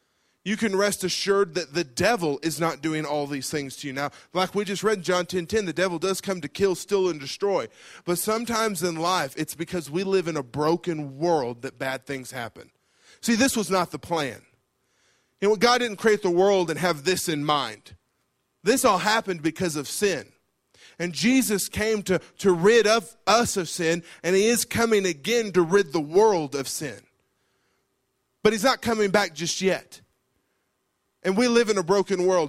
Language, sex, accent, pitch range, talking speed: English, male, American, 155-205 Hz, 200 wpm